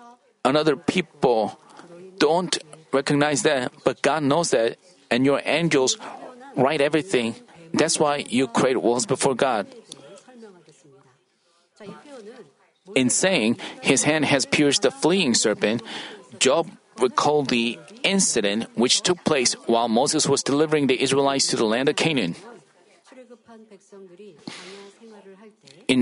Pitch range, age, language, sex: 135-185 Hz, 40-59, Korean, male